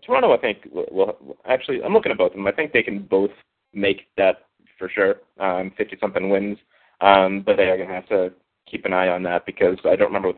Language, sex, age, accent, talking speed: English, male, 20-39, American, 245 wpm